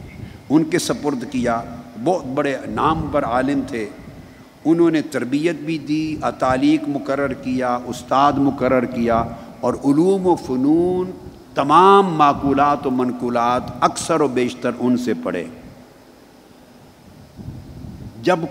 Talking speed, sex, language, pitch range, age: 115 wpm, male, Urdu, 130-175 Hz, 50-69